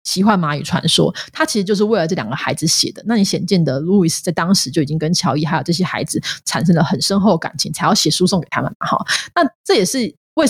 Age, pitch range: 30-49, 160-195 Hz